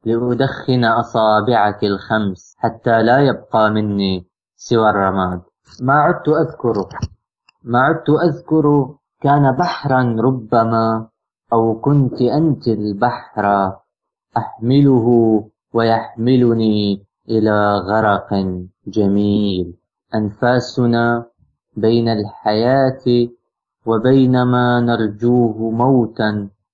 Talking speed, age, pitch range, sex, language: 75 wpm, 20-39, 105-130 Hz, male, English